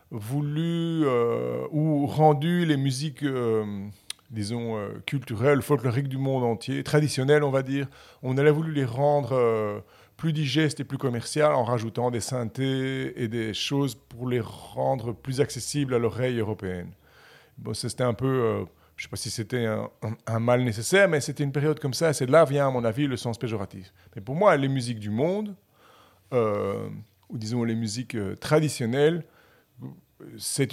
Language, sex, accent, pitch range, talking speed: French, male, French, 115-145 Hz, 180 wpm